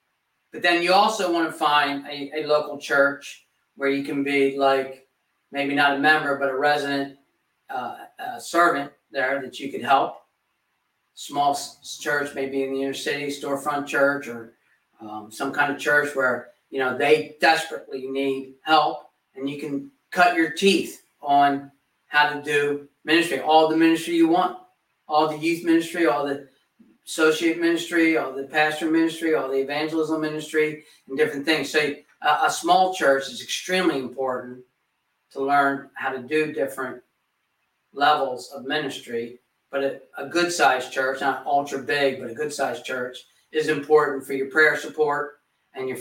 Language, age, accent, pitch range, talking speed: English, 40-59, American, 135-155 Hz, 160 wpm